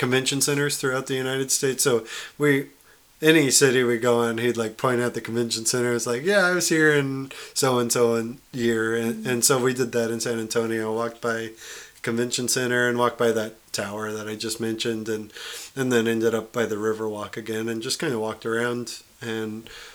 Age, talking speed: 20-39, 215 wpm